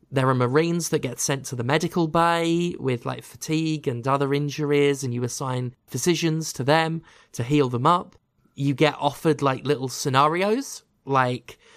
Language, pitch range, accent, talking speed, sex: English, 135-175 Hz, British, 170 wpm, male